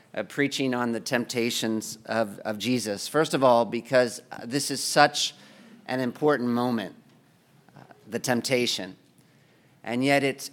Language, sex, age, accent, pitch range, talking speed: English, male, 40-59, American, 120-145 Hz, 130 wpm